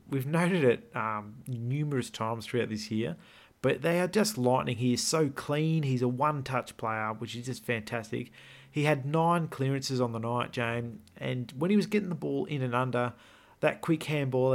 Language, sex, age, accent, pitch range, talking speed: English, male, 40-59, Australian, 115-135 Hz, 195 wpm